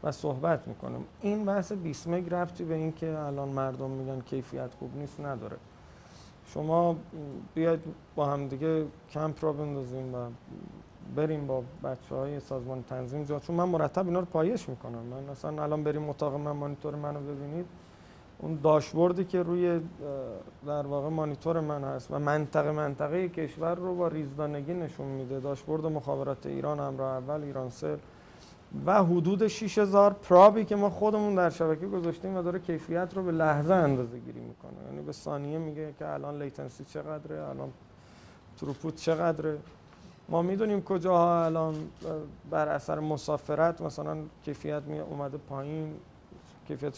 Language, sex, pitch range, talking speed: Persian, male, 140-170 Hz, 140 wpm